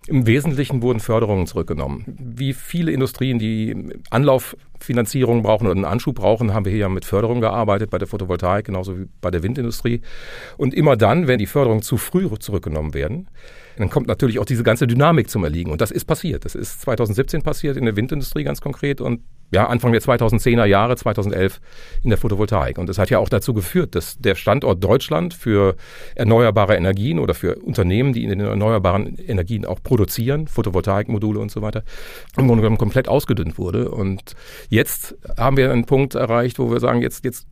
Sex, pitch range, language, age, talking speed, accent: male, 100-130 Hz, German, 40-59, 185 wpm, German